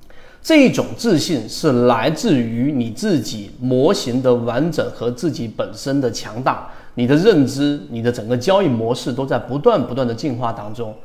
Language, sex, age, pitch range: Chinese, male, 30-49, 120-160 Hz